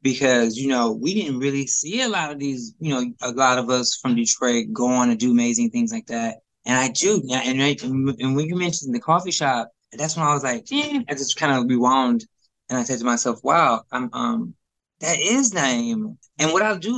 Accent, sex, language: American, male, English